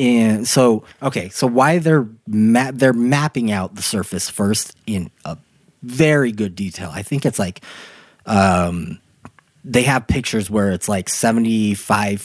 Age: 20-39